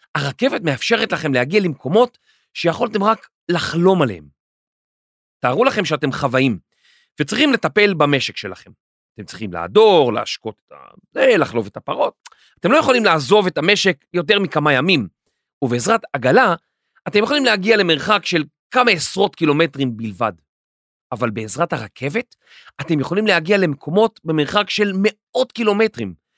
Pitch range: 140-215 Hz